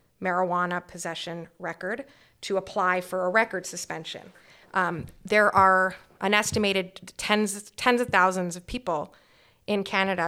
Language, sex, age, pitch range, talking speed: English, female, 30-49, 175-205 Hz, 130 wpm